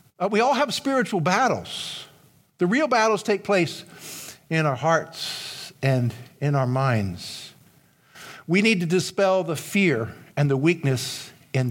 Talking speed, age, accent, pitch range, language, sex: 145 wpm, 50-69, American, 140-190 Hz, English, male